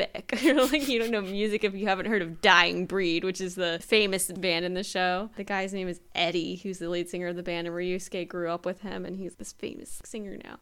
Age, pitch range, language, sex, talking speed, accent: 10-29, 195-245 Hz, English, female, 245 wpm, American